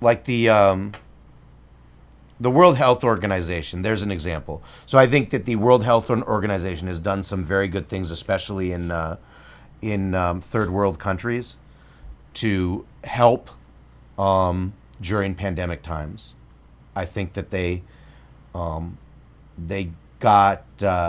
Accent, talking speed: American, 130 wpm